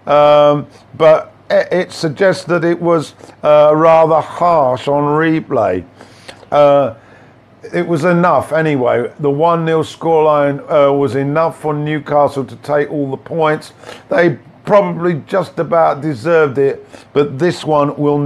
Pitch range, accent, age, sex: 135-160 Hz, British, 50-69, male